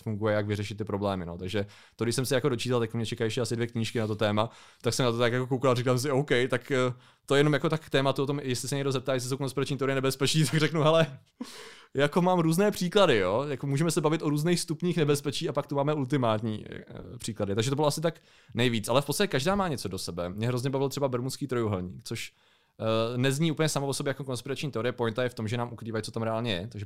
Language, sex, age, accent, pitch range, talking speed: Czech, male, 20-39, native, 110-135 Hz, 260 wpm